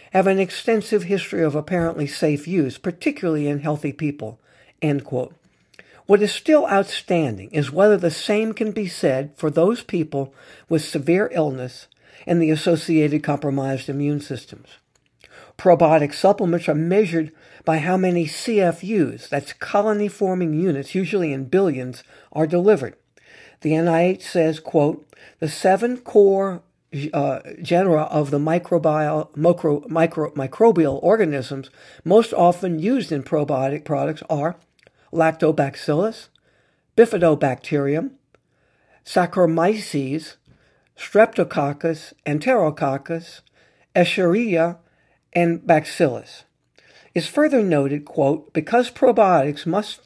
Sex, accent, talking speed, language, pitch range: male, American, 110 wpm, English, 150-190 Hz